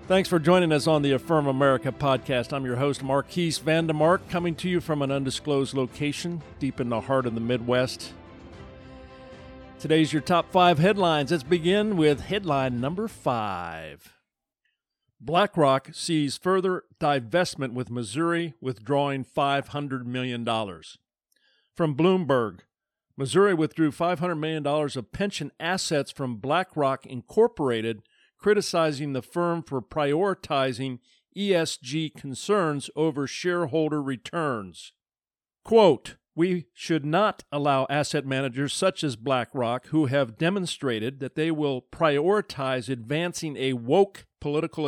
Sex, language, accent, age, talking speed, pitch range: male, English, American, 50-69, 120 wpm, 130-165 Hz